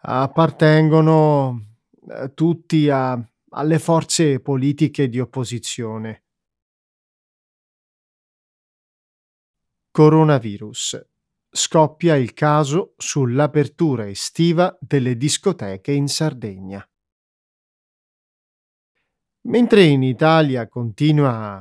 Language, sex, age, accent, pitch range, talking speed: Italian, male, 30-49, native, 120-160 Hz, 60 wpm